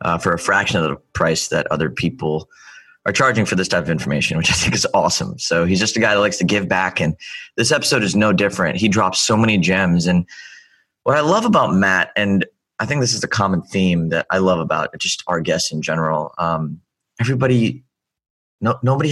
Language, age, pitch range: English, 30-49, 90-130 Hz